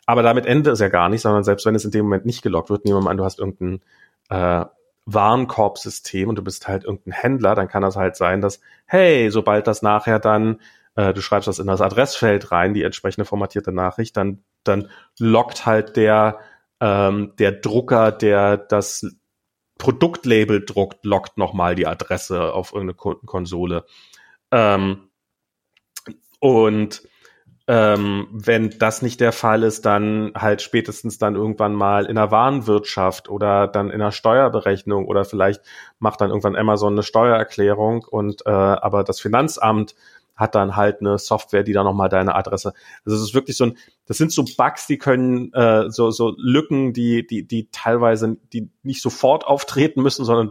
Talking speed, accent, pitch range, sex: 175 wpm, German, 100-115 Hz, male